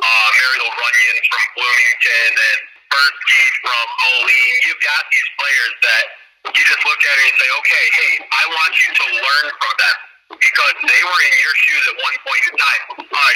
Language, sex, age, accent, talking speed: English, male, 40-59, American, 190 wpm